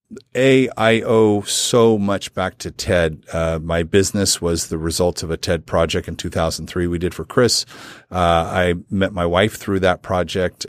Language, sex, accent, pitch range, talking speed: English, male, American, 85-105 Hz, 180 wpm